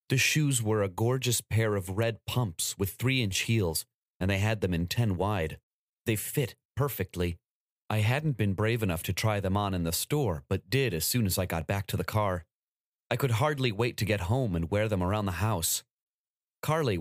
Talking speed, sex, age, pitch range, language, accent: 210 wpm, male, 30-49, 95-120 Hz, English, American